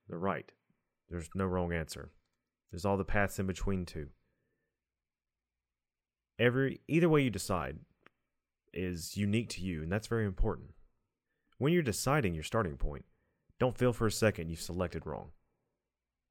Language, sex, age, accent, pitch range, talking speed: English, male, 30-49, American, 85-110 Hz, 145 wpm